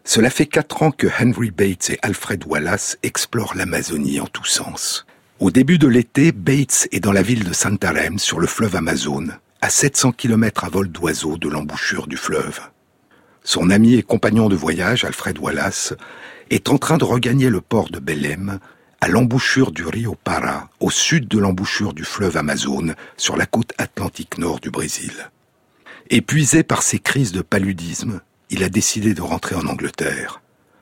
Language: French